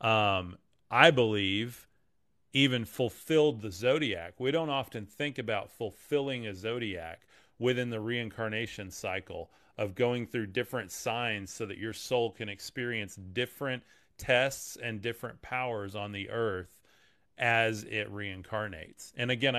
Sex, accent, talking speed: male, American, 130 wpm